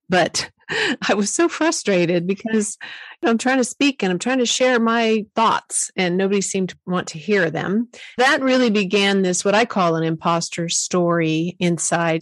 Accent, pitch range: American, 170-215 Hz